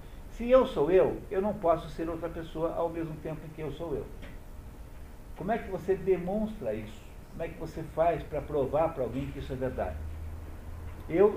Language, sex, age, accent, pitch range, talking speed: Portuguese, male, 60-79, Brazilian, 110-165 Hz, 200 wpm